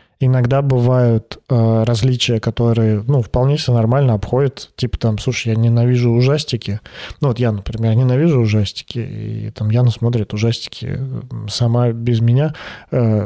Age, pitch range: 20-39, 110-130 Hz